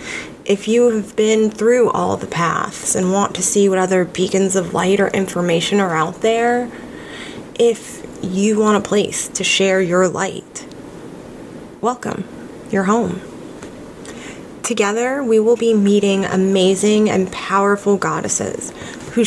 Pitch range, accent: 190-225 Hz, American